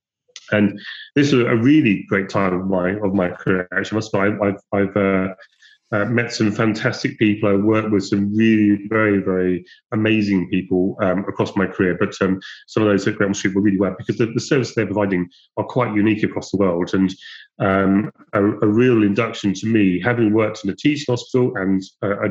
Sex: male